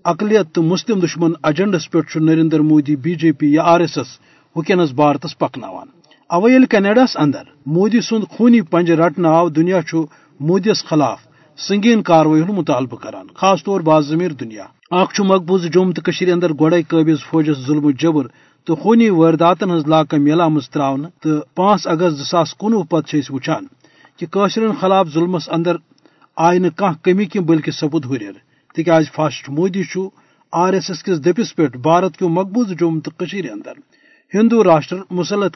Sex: male